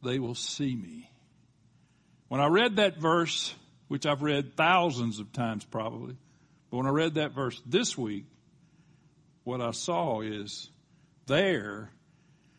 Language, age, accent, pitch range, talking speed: English, 60-79, American, 130-165 Hz, 140 wpm